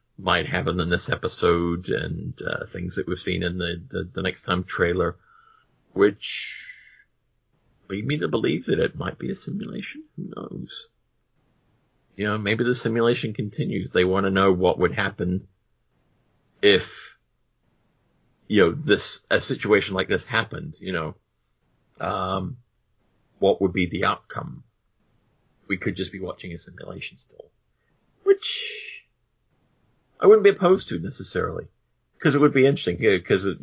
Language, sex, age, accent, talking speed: English, male, 40-59, American, 150 wpm